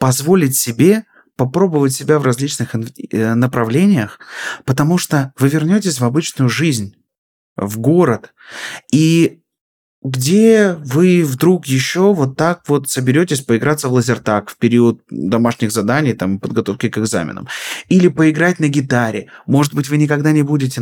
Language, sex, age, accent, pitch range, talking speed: Russian, male, 20-39, native, 120-175 Hz, 135 wpm